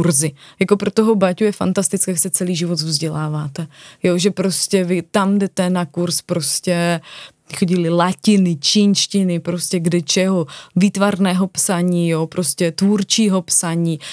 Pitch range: 170-200 Hz